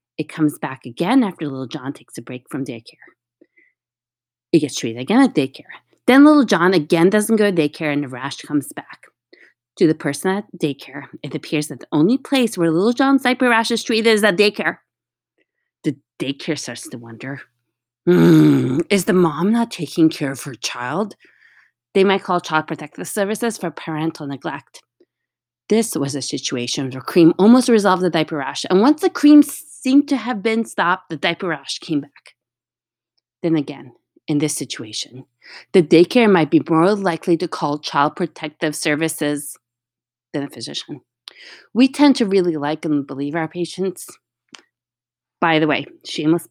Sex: female